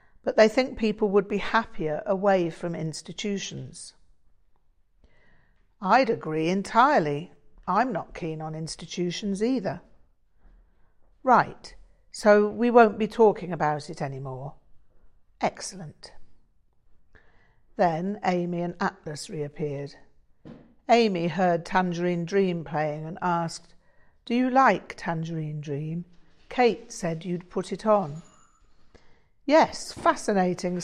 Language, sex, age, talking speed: English, female, 50-69, 105 wpm